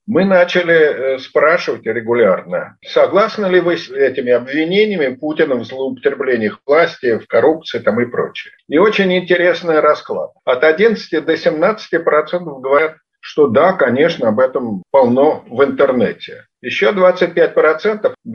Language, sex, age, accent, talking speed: Russian, male, 50-69, native, 130 wpm